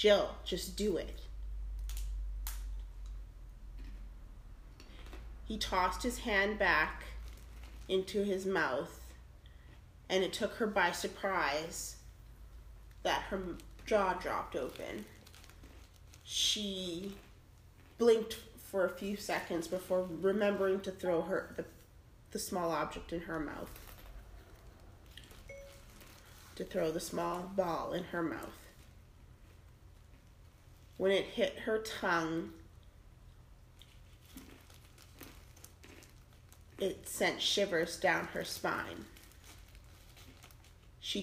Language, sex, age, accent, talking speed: English, female, 30-49, American, 90 wpm